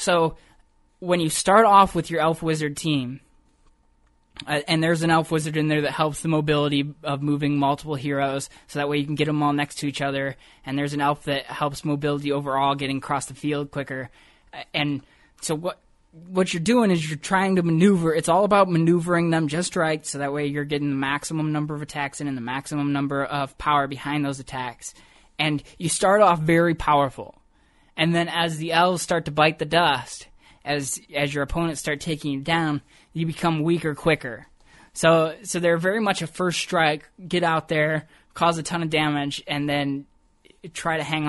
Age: 20-39